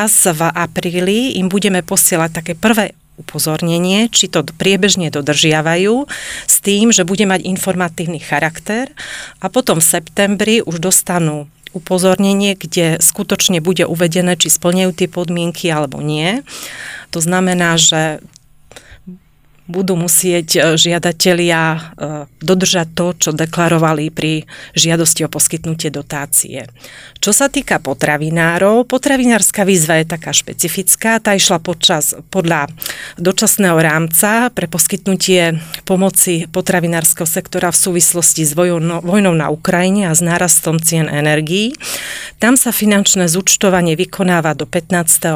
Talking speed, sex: 120 wpm, female